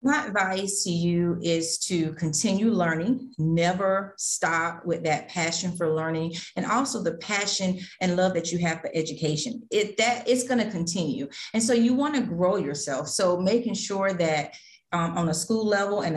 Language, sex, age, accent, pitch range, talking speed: English, female, 40-59, American, 165-200 Hz, 180 wpm